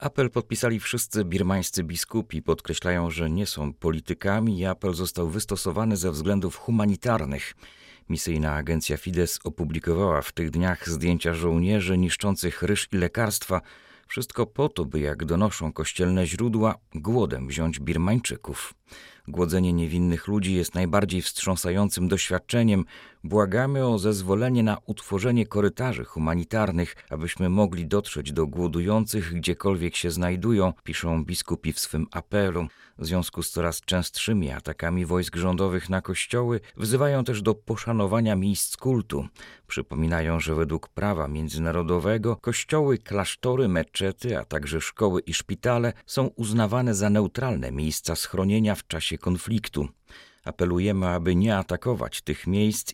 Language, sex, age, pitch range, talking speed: Polish, male, 40-59, 85-110 Hz, 130 wpm